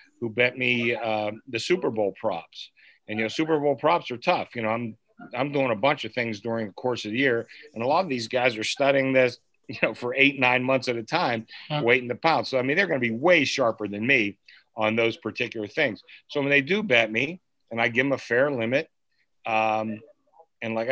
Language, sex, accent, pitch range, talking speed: English, male, American, 110-130 Hz, 240 wpm